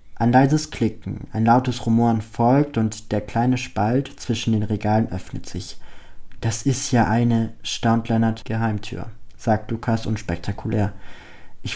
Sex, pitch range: male, 110-130 Hz